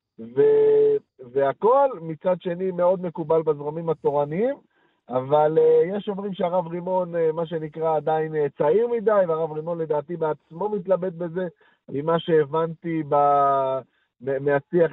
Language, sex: Hebrew, male